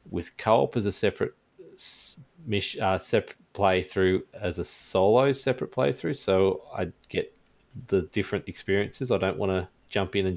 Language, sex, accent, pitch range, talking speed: English, male, Australian, 90-115 Hz, 160 wpm